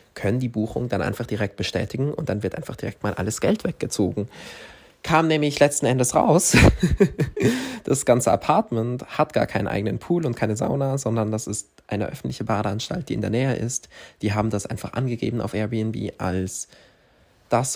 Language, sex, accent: German, male, German